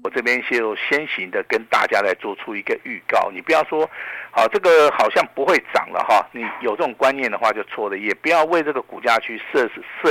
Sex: male